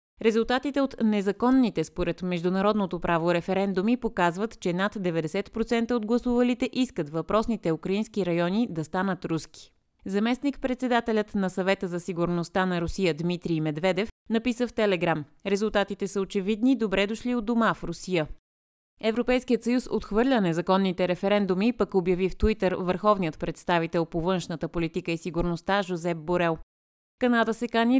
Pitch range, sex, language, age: 170-225 Hz, female, Bulgarian, 30-49